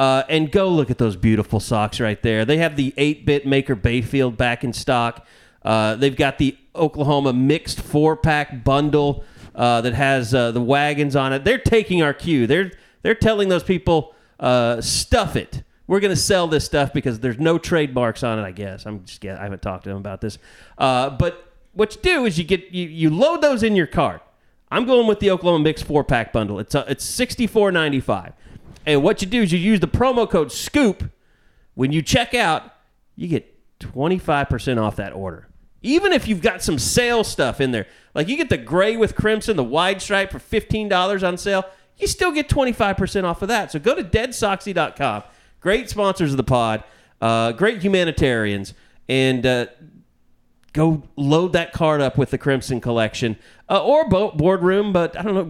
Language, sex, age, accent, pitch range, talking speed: English, male, 30-49, American, 120-190 Hz, 195 wpm